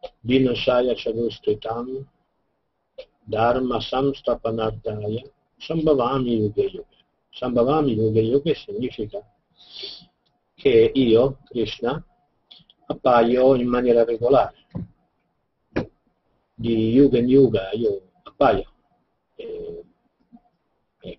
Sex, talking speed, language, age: male, 70 wpm, Italian, 50-69